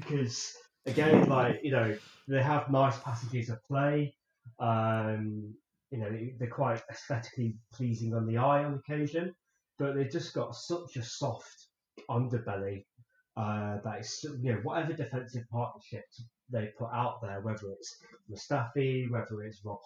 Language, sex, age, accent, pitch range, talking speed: English, male, 20-39, British, 110-135 Hz, 150 wpm